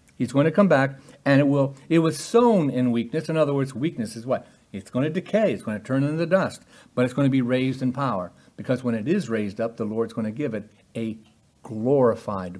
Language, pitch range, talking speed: English, 115-160 Hz, 245 wpm